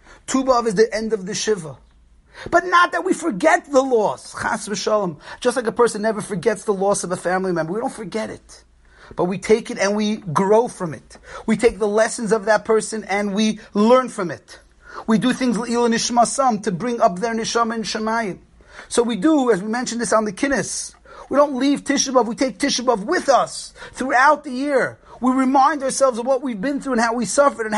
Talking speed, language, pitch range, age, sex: 210 wpm, English, 210-265 Hz, 30-49, male